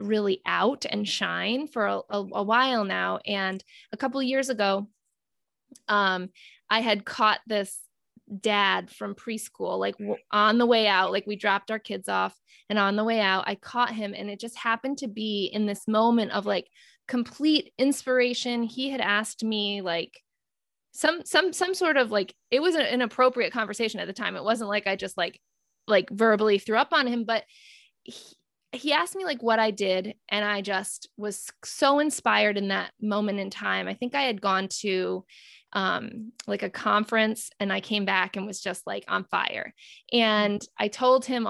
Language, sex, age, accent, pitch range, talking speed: English, female, 20-39, American, 200-245 Hz, 190 wpm